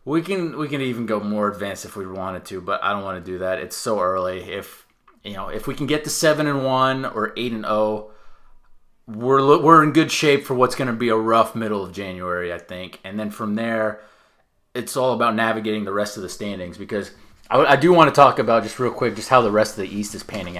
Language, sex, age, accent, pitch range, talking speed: English, male, 30-49, American, 100-130 Hz, 255 wpm